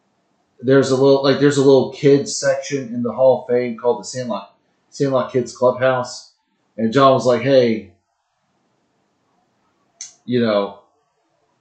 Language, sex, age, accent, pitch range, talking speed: English, male, 30-49, American, 110-135 Hz, 140 wpm